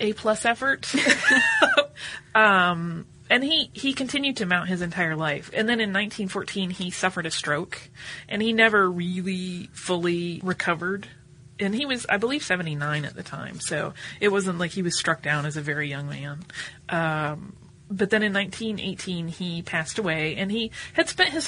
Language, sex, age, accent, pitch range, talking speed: English, female, 30-49, American, 155-205 Hz, 170 wpm